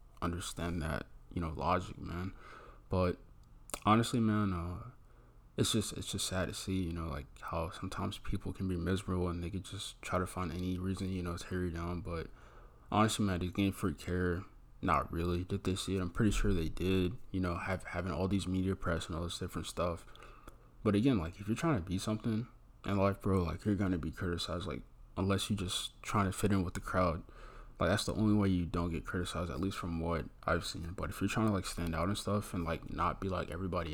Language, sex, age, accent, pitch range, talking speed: English, male, 20-39, American, 85-100 Hz, 230 wpm